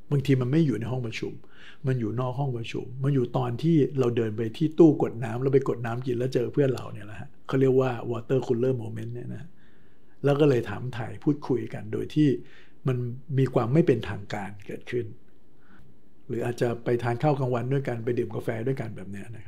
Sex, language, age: male, Thai, 60-79